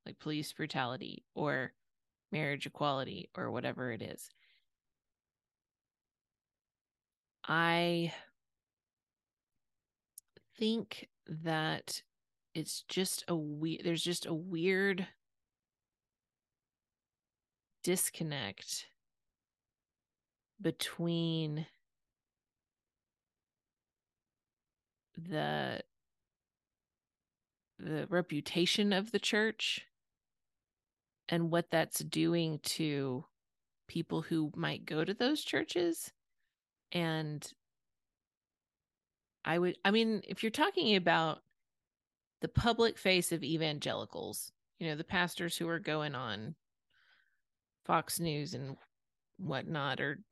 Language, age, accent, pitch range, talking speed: English, 30-49, American, 145-180 Hz, 80 wpm